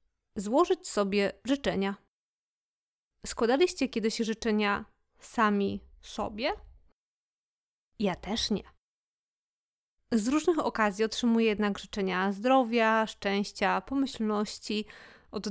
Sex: female